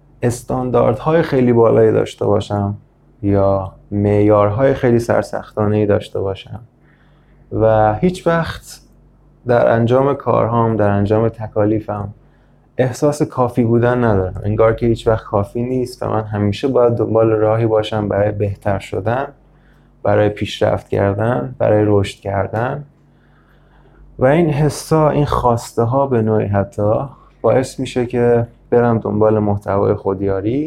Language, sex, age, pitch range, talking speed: Persian, male, 20-39, 105-130 Hz, 125 wpm